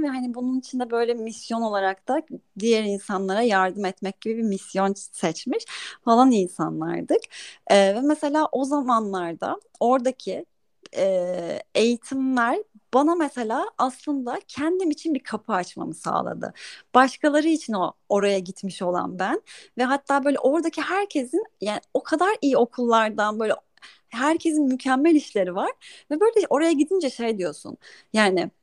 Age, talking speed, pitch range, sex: 30-49, 135 wpm, 200-295 Hz, female